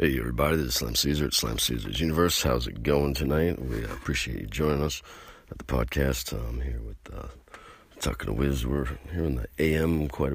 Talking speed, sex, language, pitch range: 205 wpm, male, English, 65-80 Hz